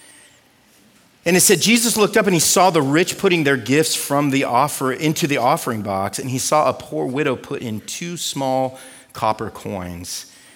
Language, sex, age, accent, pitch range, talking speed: English, male, 40-59, American, 115-175 Hz, 190 wpm